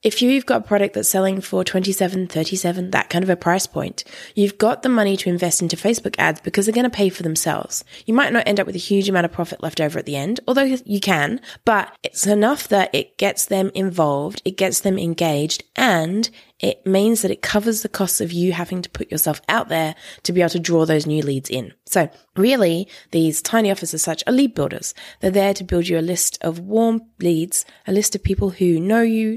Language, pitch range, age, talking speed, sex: English, 170-210 Hz, 20-39, 235 wpm, female